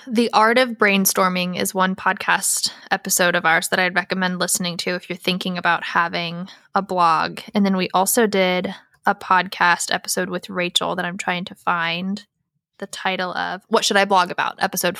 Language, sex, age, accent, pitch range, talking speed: English, female, 10-29, American, 180-210 Hz, 185 wpm